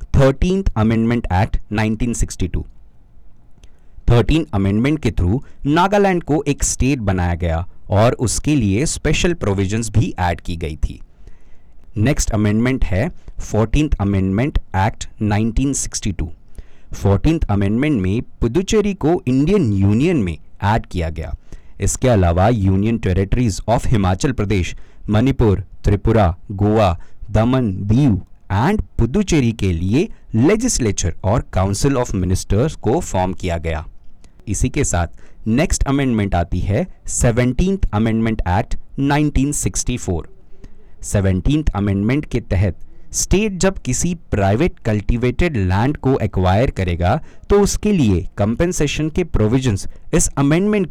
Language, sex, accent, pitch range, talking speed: Hindi, male, native, 95-130 Hz, 100 wpm